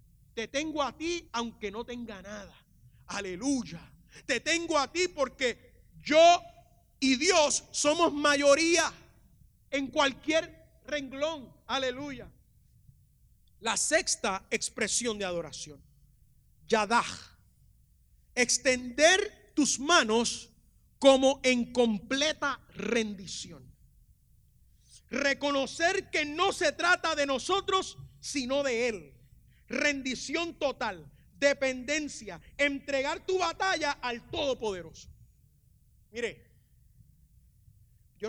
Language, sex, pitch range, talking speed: English, male, 205-290 Hz, 90 wpm